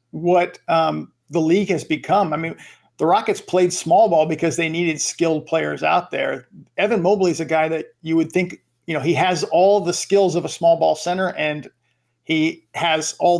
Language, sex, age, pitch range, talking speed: English, male, 50-69, 150-180 Hz, 200 wpm